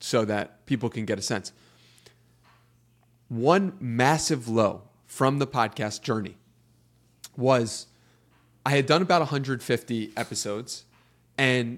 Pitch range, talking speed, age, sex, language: 115-135 Hz, 110 wpm, 30-49, male, English